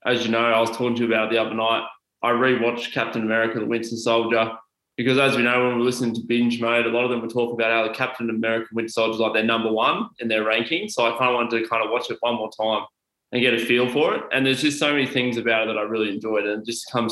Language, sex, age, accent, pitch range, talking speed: English, male, 20-39, Australian, 115-130 Hz, 300 wpm